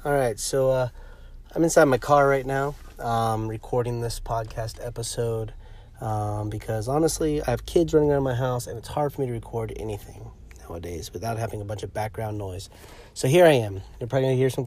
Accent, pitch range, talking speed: American, 100-125 Hz, 205 wpm